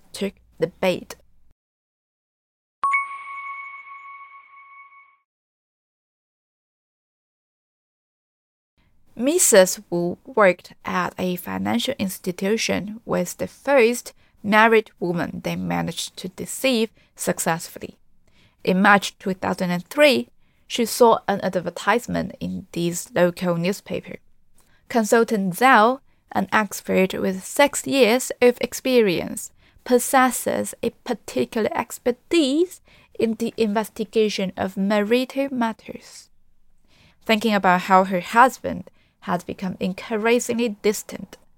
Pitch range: 185-245 Hz